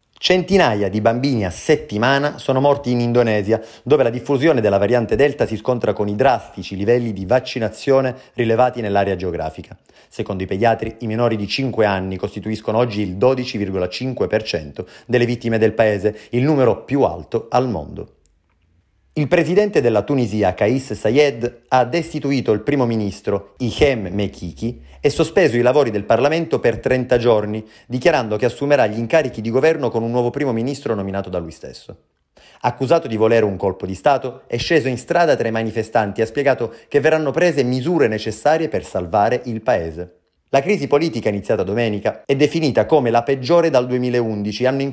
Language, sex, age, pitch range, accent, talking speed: Italian, male, 30-49, 105-140 Hz, native, 170 wpm